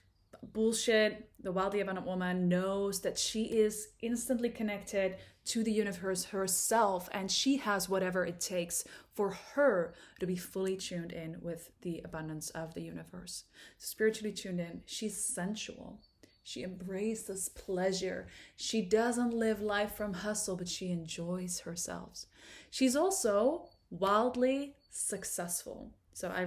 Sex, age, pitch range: female, 20-39, 180-230 Hz